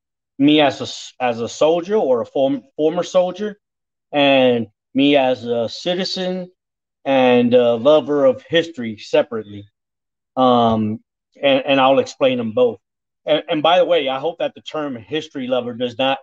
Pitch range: 125-175 Hz